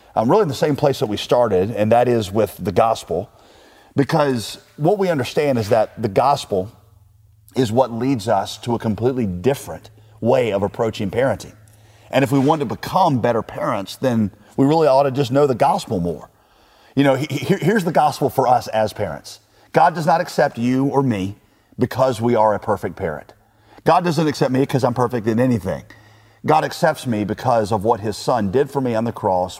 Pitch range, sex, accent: 105-135 Hz, male, American